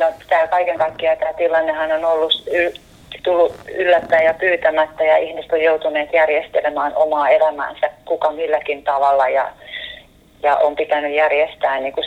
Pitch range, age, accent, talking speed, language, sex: 150-175 Hz, 30-49, native, 145 wpm, Finnish, female